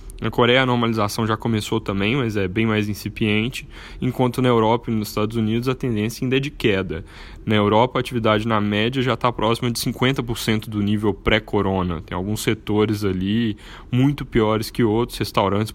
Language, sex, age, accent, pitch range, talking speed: Portuguese, male, 10-29, Brazilian, 105-120 Hz, 185 wpm